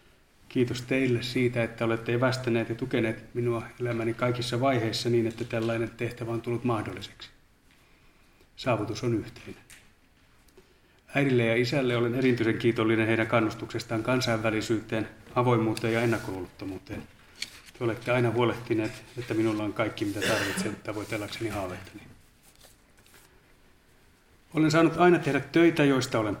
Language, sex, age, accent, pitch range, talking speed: Finnish, male, 30-49, native, 110-125 Hz, 120 wpm